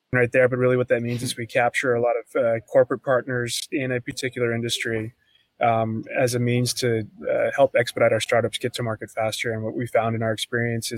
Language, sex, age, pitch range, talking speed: English, male, 20-39, 115-130 Hz, 225 wpm